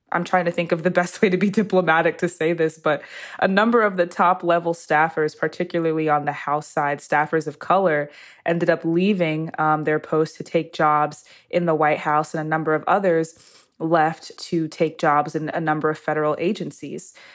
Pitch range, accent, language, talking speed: 155-180 Hz, American, English, 195 wpm